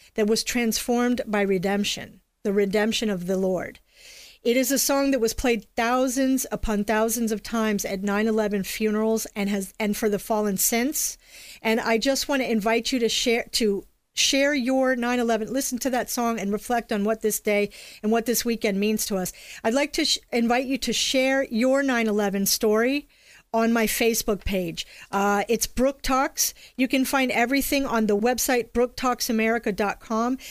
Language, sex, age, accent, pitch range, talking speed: English, female, 40-59, American, 210-250 Hz, 175 wpm